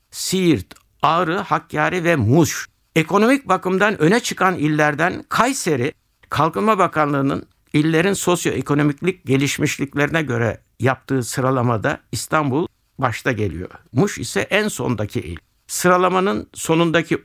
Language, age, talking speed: Turkish, 60-79, 100 wpm